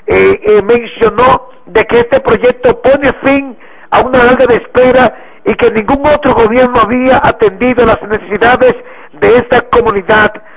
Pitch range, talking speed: 225-265 Hz, 150 wpm